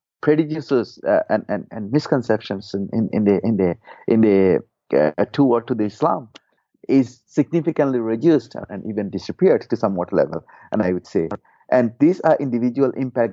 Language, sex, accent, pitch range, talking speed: English, male, Indian, 105-135 Hz, 170 wpm